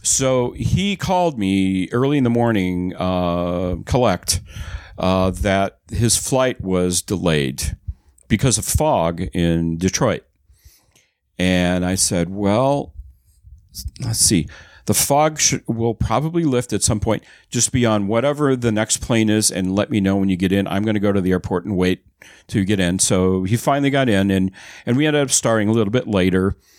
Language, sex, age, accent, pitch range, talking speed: English, male, 50-69, American, 90-110 Hz, 175 wpm